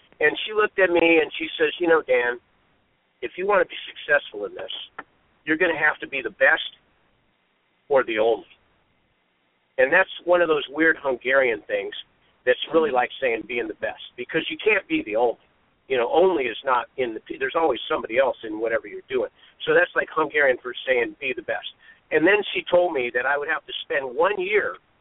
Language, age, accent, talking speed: English, 50-69, American, 210 wpm